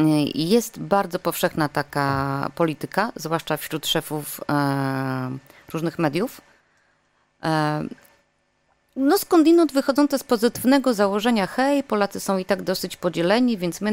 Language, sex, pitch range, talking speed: Polish, female, 165-250 Hz, 120 wpm